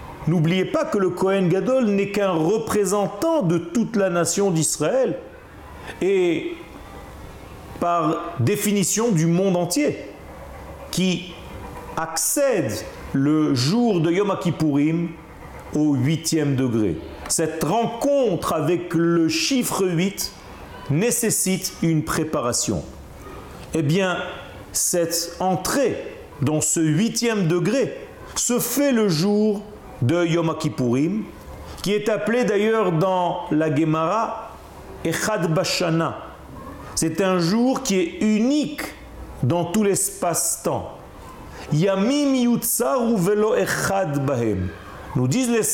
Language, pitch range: French, 160-220 Hz